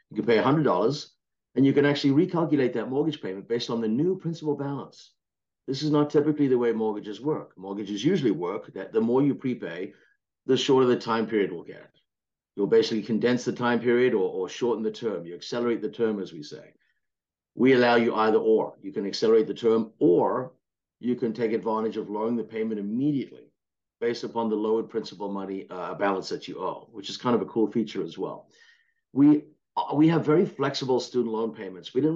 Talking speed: 205 wpm